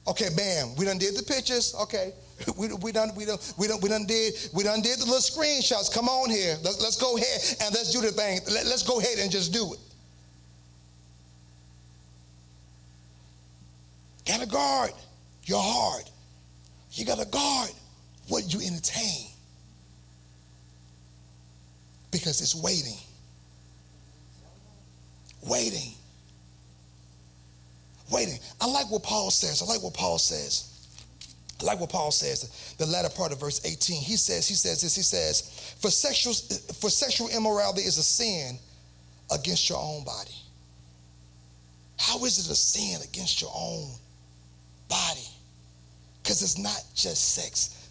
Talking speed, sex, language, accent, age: 135 wpm, male, English, American, 40-59